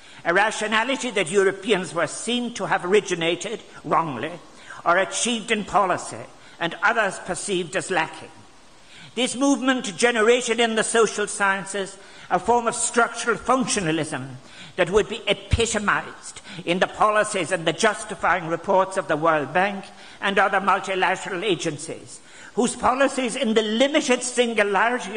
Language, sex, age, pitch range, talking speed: English, male, 60-79, 190-230 Hz, 135 wpm